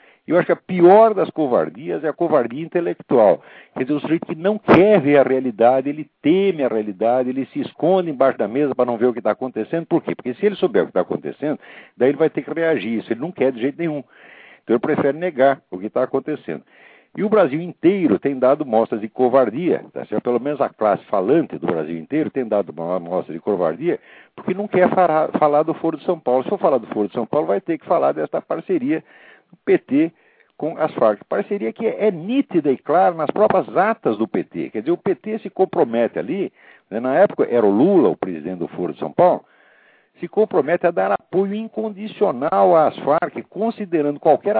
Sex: male